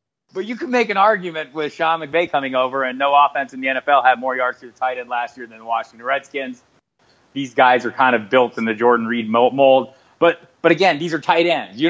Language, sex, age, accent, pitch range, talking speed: English, male, 30-49, American, 120-155 Hz, 245 wpm